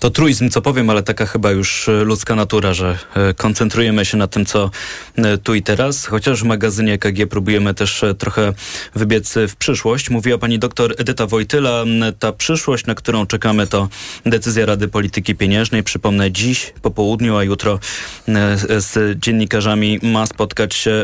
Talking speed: 155 wpm